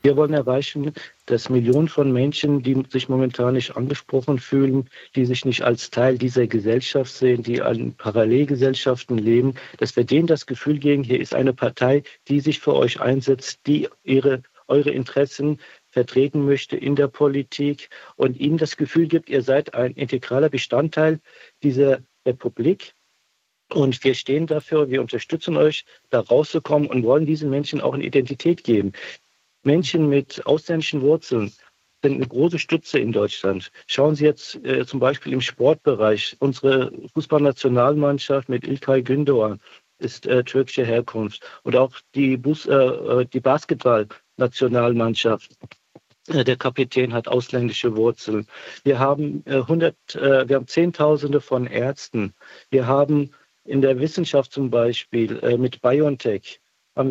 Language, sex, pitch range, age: German, male, 125-145 Hz, 50-69